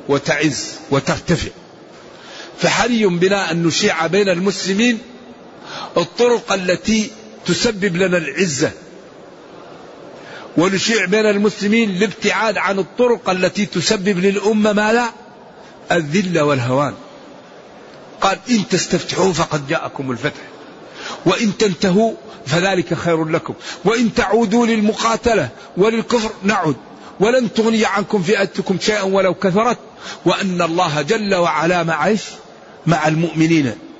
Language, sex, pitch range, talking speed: Arabic, male, 160-210 Hz, 95 wpm